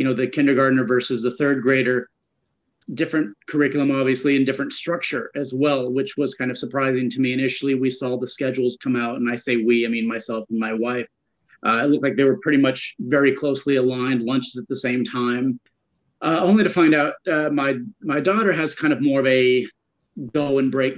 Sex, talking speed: male, 205 wpm